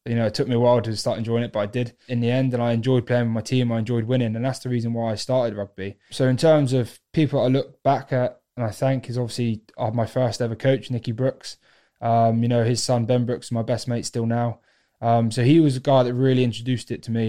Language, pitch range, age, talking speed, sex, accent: English, 115-125 Hz, 20-39, 275 wpm, male, British